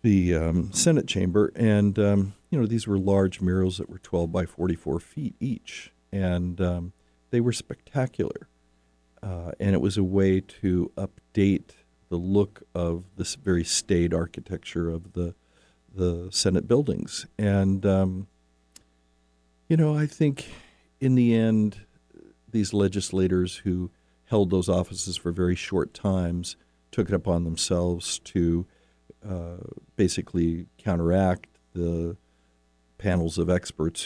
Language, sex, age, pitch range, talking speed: English, male, 50-69, 80-95 Hz, 130 wpm